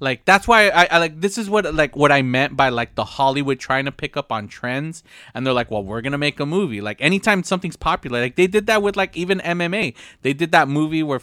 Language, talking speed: English, 265 wpm